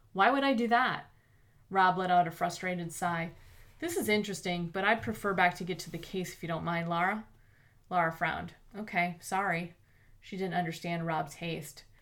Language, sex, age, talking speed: English, female, 30-49, 185 wpm